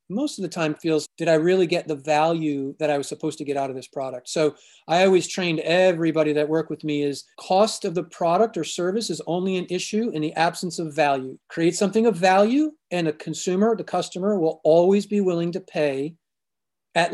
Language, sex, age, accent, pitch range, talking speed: English, male, 40-59, American, 150-180 Hz, 215 wpm